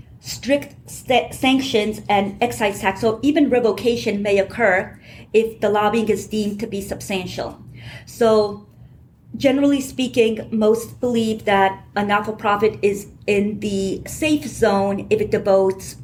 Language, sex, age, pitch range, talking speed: English, female, 40-59, 195-240 Hz, 135 wpm